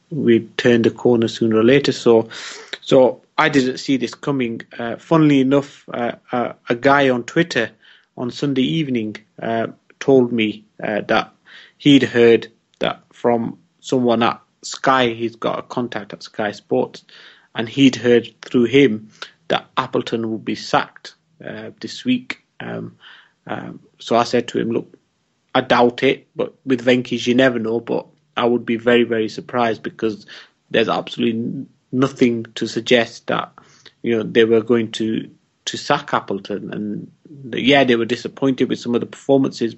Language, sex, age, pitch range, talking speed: English, male, 30-49, 115-130 Hz, 165 wpm